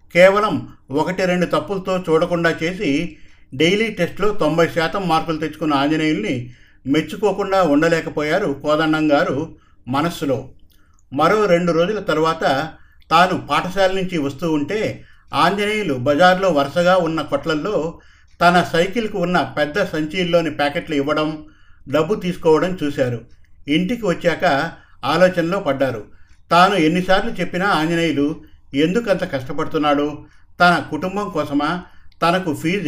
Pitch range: 140-175 Hz